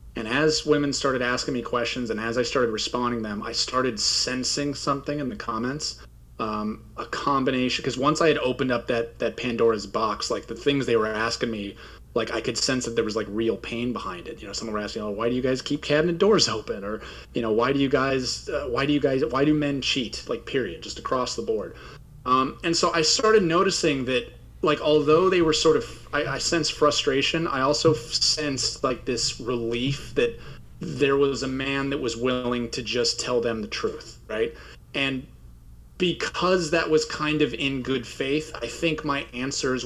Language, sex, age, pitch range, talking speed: English, male, 30-49, 115-145 Hz, 210 wpm